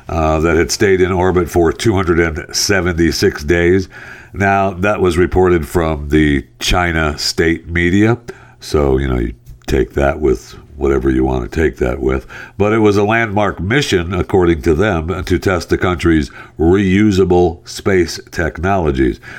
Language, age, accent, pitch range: English, 60-79, American, 80-105 Hz